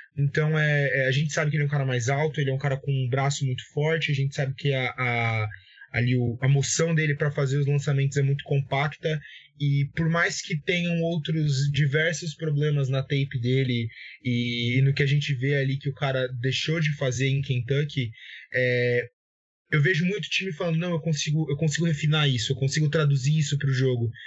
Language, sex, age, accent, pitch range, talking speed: Portuguese, male, 20-39, Brazilian, 140-170 Hz, 200 wpm